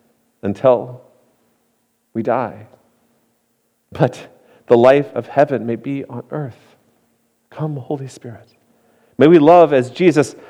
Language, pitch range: English, 120-160 Hz